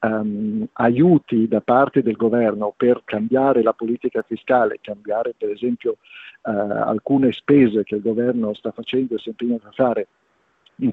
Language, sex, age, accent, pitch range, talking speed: Italian, male, 50-69, native, 110-130 Hz, 155 wpm